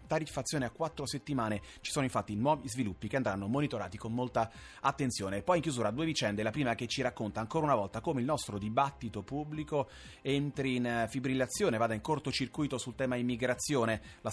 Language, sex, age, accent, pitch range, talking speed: Italian, male, 30-49, native, 110-135 Hz, 180 wpm